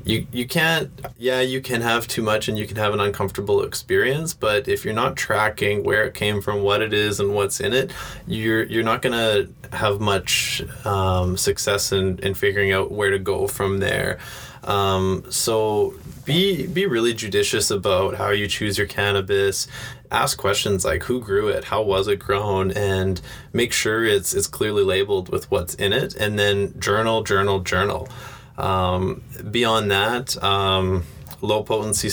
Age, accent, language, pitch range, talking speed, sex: 20-39, American, English, 100-125 Hz, 175 wpm, male